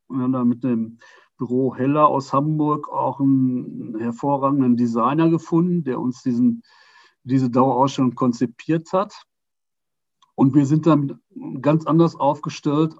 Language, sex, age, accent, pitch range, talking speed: German, male, 50-69, German, 125-155 Hz, 130 wpm